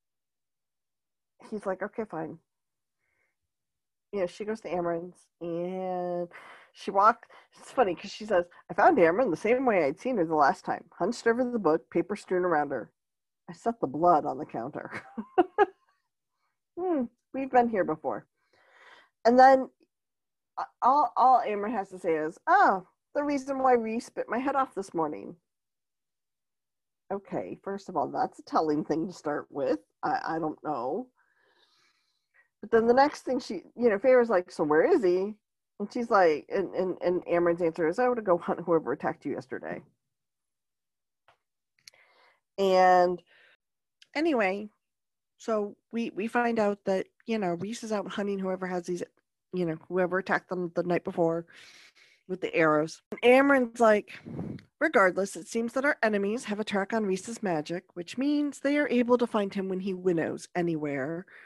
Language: English